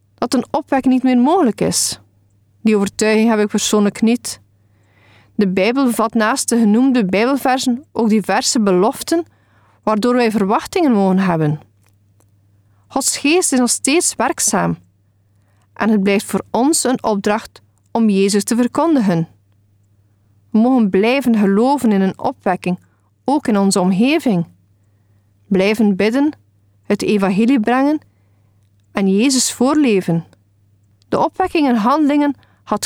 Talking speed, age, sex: 125 wpm, 40-59, female